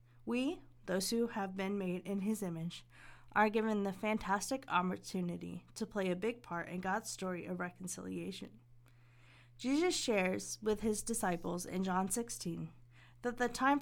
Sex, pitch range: female, 165-230 Hz